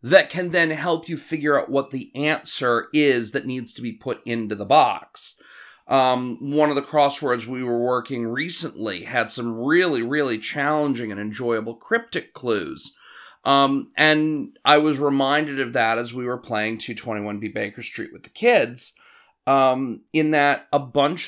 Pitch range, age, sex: 125-165 Hz, 30-49, male